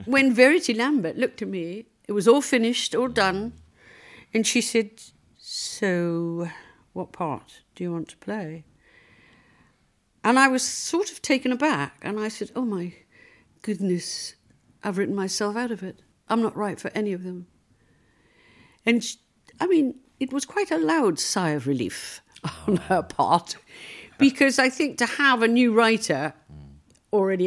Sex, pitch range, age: female, 175-240 Hz, 60-79